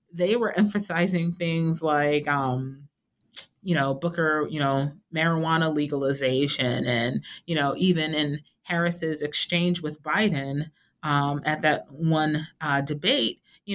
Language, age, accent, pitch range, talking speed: English, 30-49, American, 145-175 Hz, 125 wpm